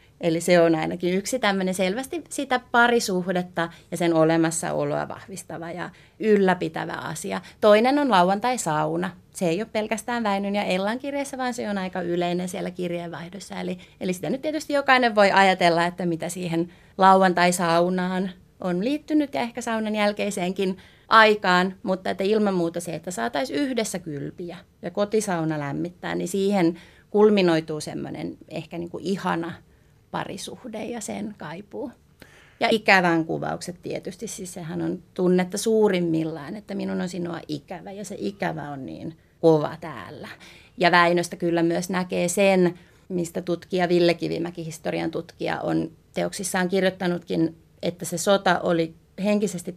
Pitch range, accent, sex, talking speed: 170-200 Hz, native, female, 145 wpm